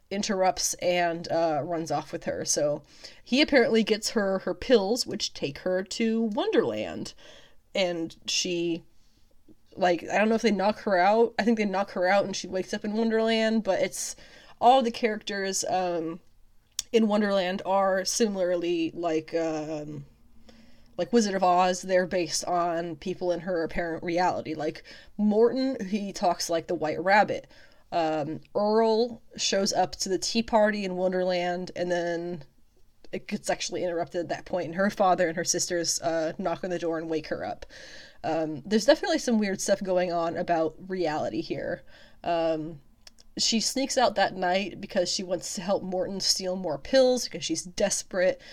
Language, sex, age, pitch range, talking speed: English, female, 20-39, 175-220 Hz, 170 wpm